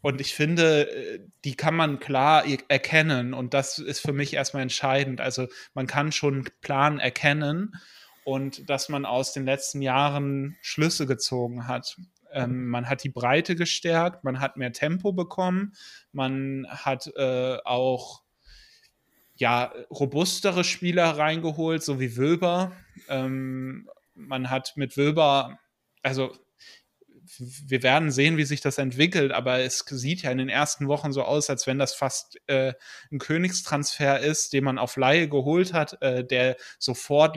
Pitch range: 130-155 Hz